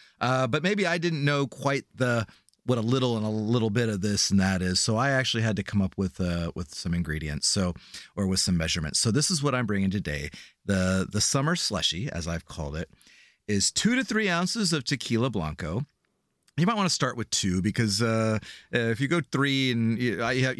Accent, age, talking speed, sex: American, 40-59, 215 wpm, male